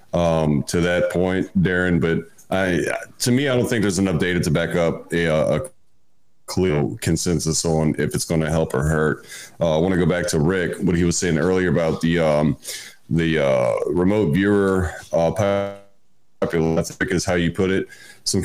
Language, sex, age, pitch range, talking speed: English, male, 30-49, 80-95 Hz, 190 wpm